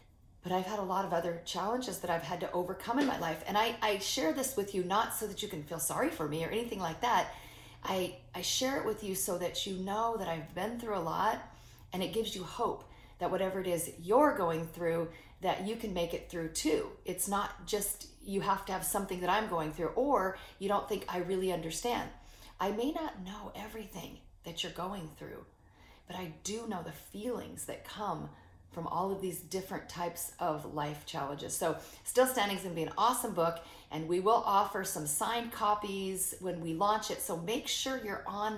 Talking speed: 220 wpm